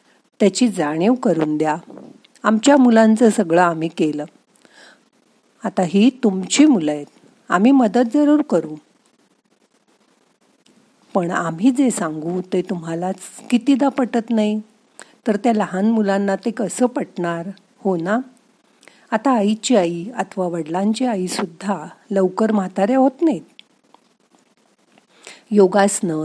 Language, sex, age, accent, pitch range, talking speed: Marathi, female, 50-69, native, 180-245 Hz, 110 wpm